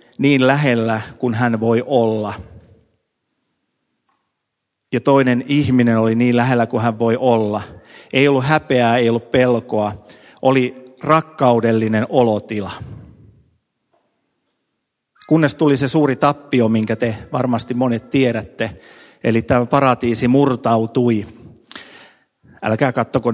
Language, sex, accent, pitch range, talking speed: Finnish, male, native, 115-135 Hz, 105 wpm